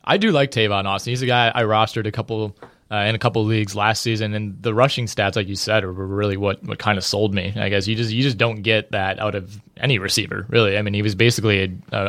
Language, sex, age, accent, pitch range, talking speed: English, male, 20-39, American, 100-115 Hz, 275 wpm